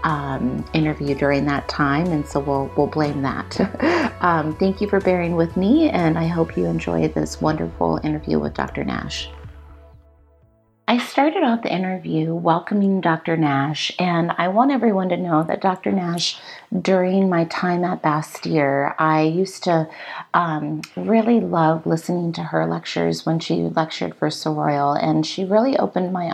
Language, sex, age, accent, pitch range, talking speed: English, female, 40-59, American, 145-180 Hz, 160 wpm